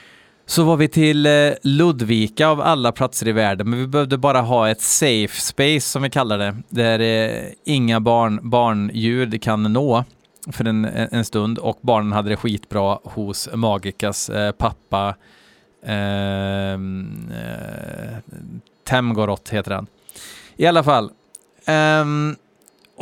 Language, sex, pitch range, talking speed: Swedish, male, 110-145 Hz, 125 wpm